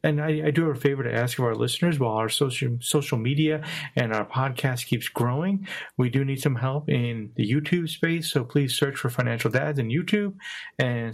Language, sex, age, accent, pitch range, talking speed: English, male, 40-59, American, 115-145 Hz, 215 wpm